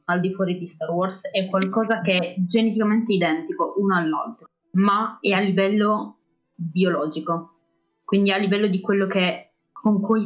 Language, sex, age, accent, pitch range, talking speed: Italian, female, 20-39, native, 175-220 Hz, 160 wpm